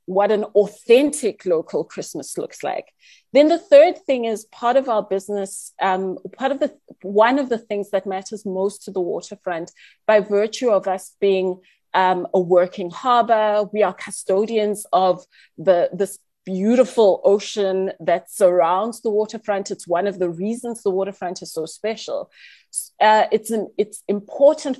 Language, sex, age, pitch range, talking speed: English, female, 30-49, 195-250 Hz, 160 wpm